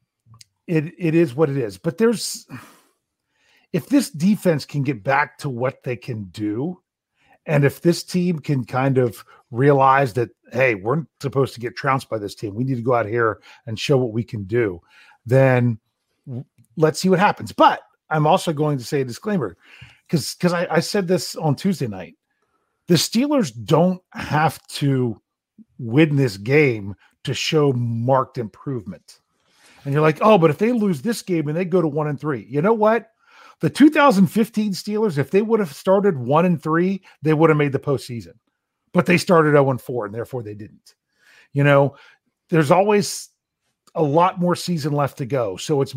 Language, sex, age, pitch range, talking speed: English, male, 40-59, 130-180 Hz, 185 wpm